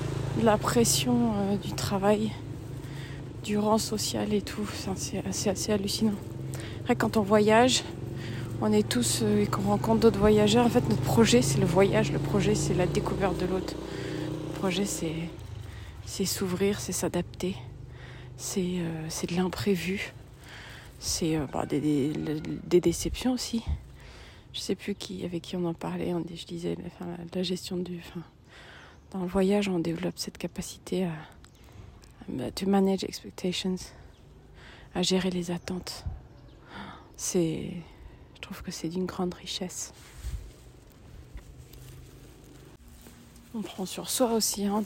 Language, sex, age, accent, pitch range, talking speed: French, female, 30-49, French, 135-190 Hz, 130 wpm